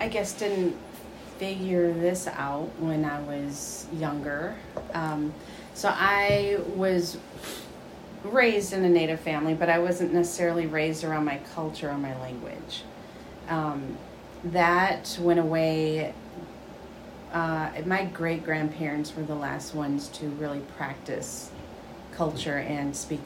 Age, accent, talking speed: 30-49, American, 125 wpm